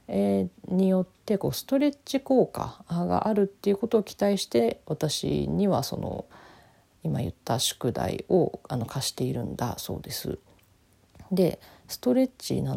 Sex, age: female, 40-59